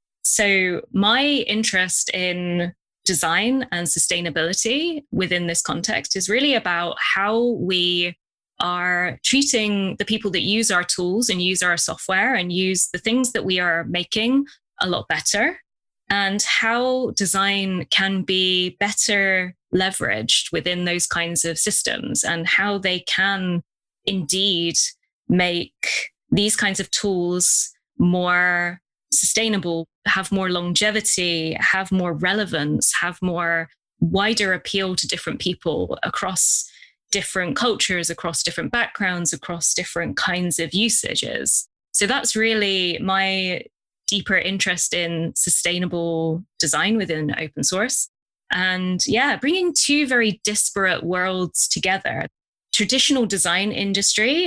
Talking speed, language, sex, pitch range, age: 120 wpm, English, female, 175-210 Hz, 20-39